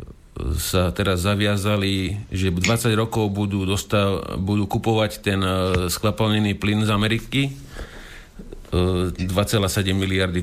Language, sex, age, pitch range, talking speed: Slovak, male, 50-69, 95-110 Hz, 100 wpm